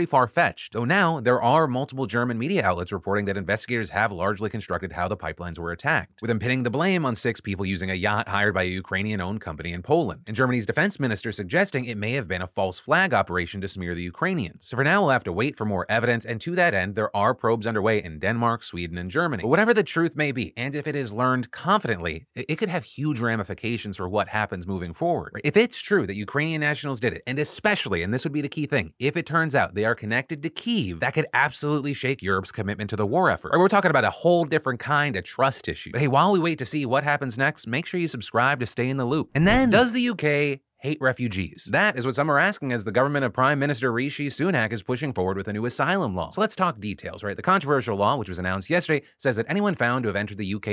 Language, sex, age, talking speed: English, male, 30-49, 255 wpm